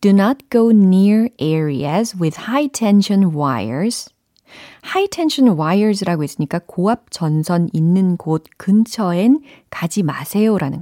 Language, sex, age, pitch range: Korean, female, 40-59, 165-240 Hz